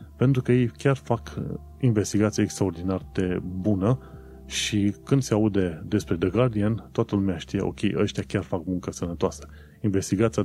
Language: Romanian